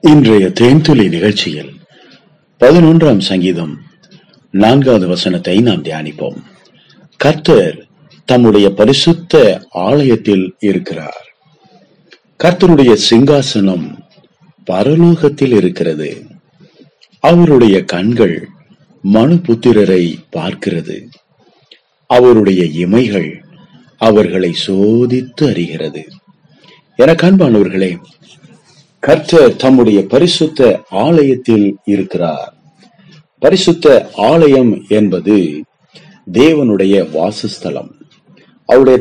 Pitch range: 105-170 Hz